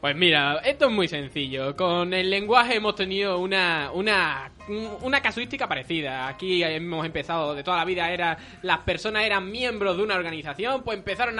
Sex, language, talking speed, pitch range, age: male, Spanish, 175 wpm, 160-205 Hz, 20-39